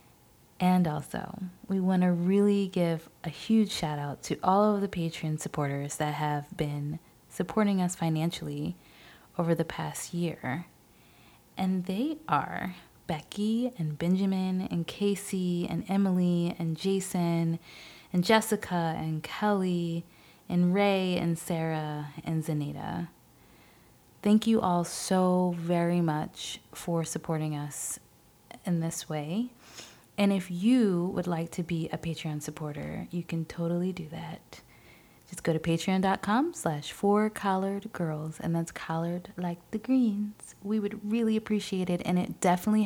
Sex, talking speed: female, 135 wpm